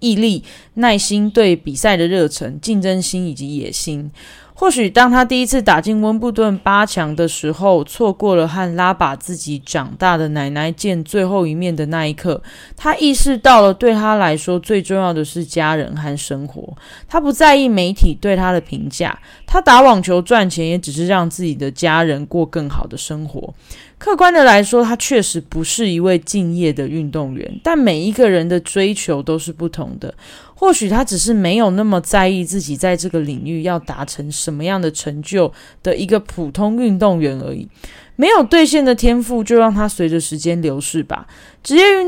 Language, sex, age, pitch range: Chinese, female, 20-39, 160-225 Hz